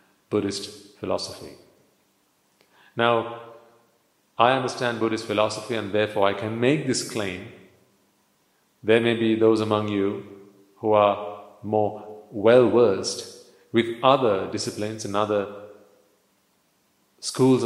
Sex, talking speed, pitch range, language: male, 100 wpm, 105-125 Hz, English